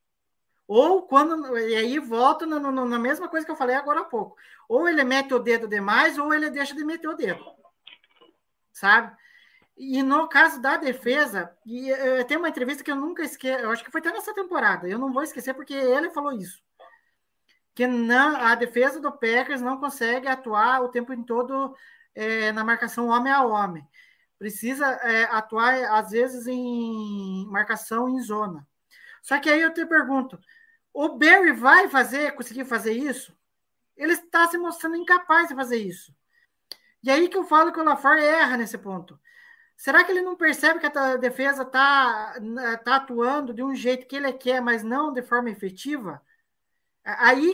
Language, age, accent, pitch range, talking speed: Portuguese, 20-39, Brazilian, 235-310 Hz, 175 wpm